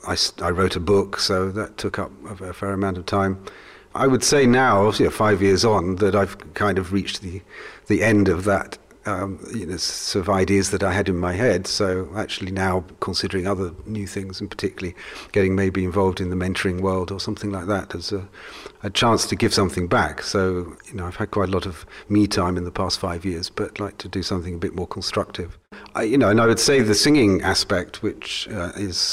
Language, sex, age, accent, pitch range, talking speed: English, male, 40-59, British, 95-105 Hz, 225 wpm